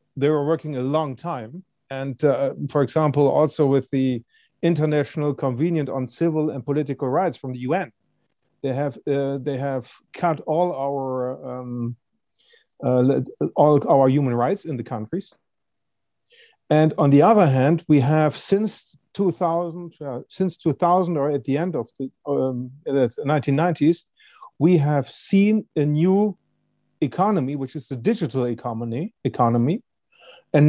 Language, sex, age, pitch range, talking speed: English, male, 40-59, 135-170 Hz, 145 wpm